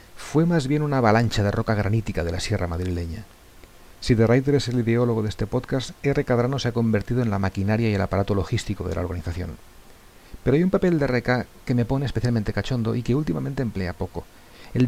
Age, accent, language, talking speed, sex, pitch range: 40-59, Spanish, English, 210 wpm, male, 95-120 Hz